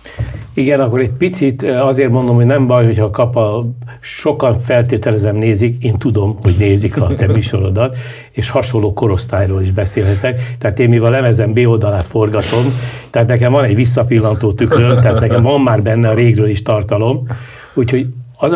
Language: Hungarian